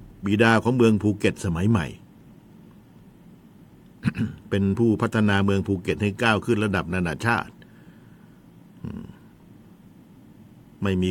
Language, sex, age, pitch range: Thai, male, 60-79, 95-115 Hz